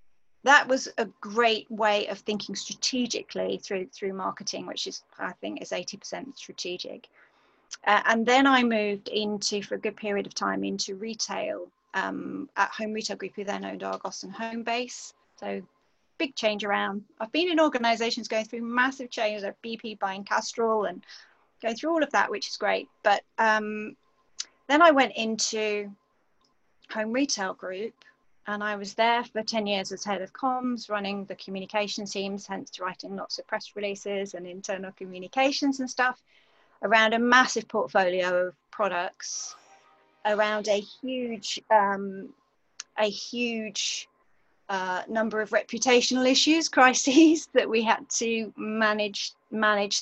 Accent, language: British, English